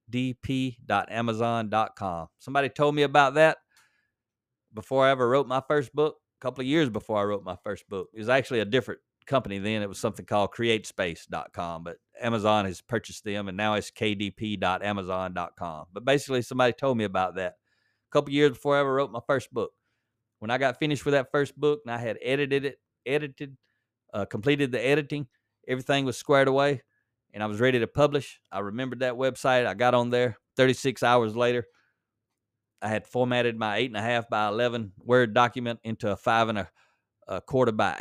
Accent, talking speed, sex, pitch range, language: American, 190 wpm, male, 105-130 Hz, English